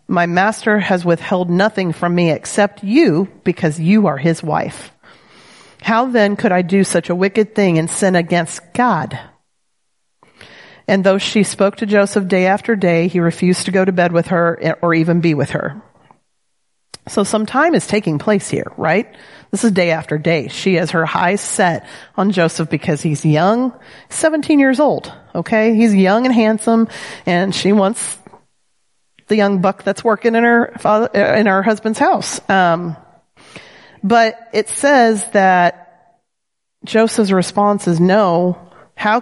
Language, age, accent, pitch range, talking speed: English, 40-59, American, 175-225 Hz, 160 wpm